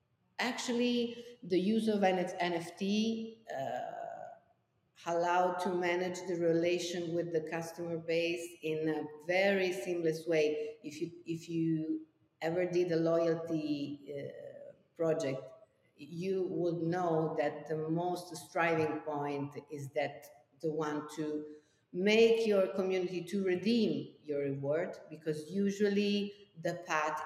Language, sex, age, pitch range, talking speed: English, female, 50-69, 150-180 Hz, 115 wpm